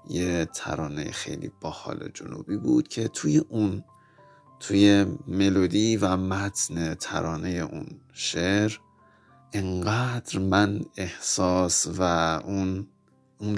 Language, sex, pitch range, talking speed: Persian, male, 80-95 Hz, 95 wpm